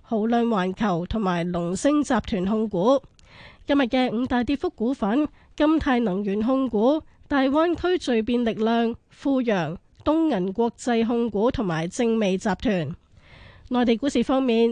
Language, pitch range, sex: Chinese, 210-270 Hz, female